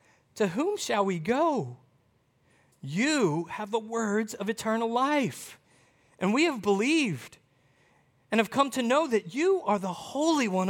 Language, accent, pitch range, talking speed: English, American, 185-270 Hz, 150 wpm